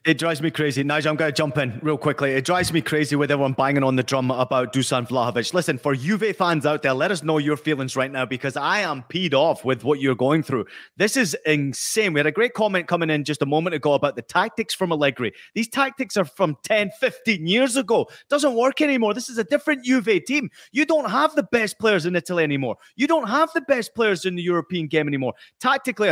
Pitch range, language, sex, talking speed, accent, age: 145-215 Hz, English, male, 240 wpm, British, 30-49